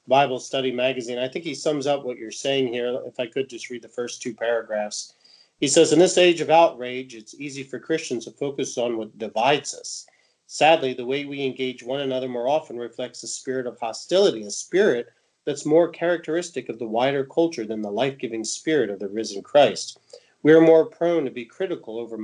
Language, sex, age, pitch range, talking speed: English, male, 40-59, 115-155 Hz, 210 wpm